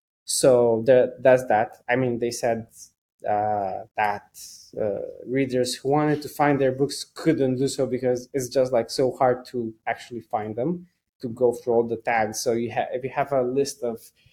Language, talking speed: English, 195 wpm